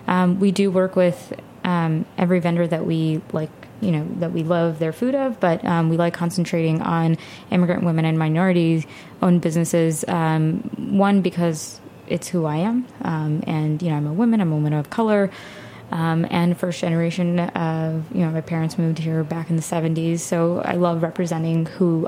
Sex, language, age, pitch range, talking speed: female, English, 20-39, 165-180 Hz, 190 wpm